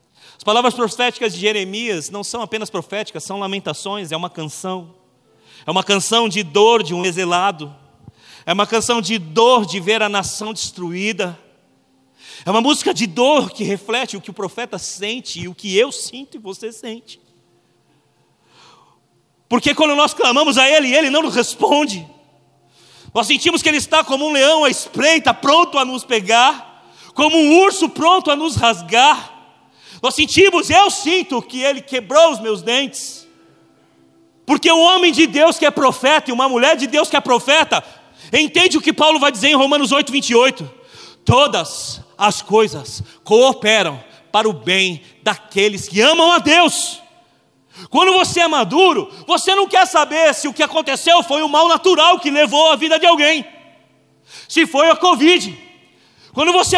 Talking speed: 170 wpm